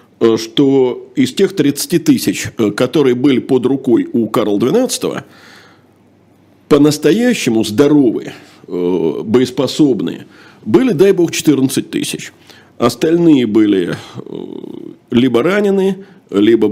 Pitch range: 115-160 Hz